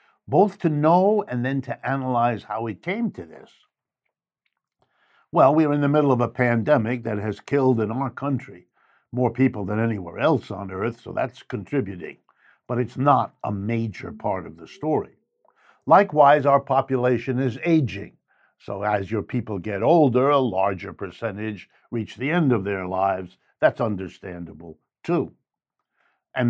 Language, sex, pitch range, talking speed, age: English, male, 105-140 Hz, 160 wpm, 60-79